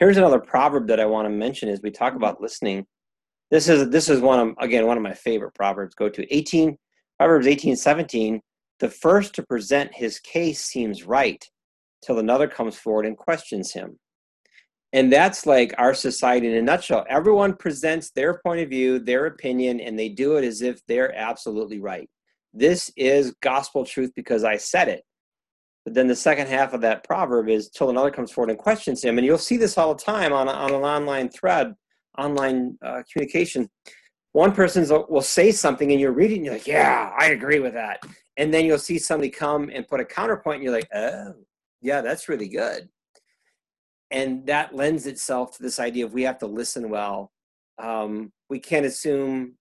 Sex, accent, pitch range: male, American, 115-150 Hz